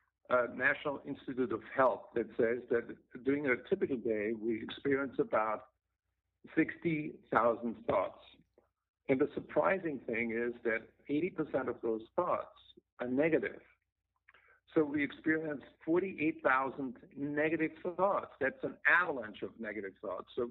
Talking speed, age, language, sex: 125 wpm, 50-69, English, male